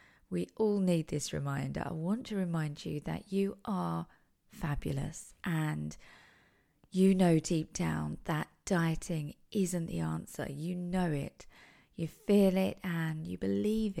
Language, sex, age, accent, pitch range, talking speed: English, female, 40-59, British, 150-195 Hz, 140 wpm